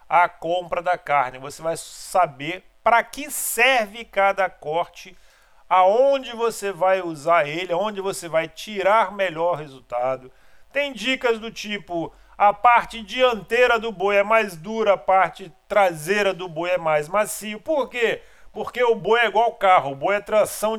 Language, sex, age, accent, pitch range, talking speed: Portuguese, male, 40-59, Brazilian, 180-230 Hz, 160 wpm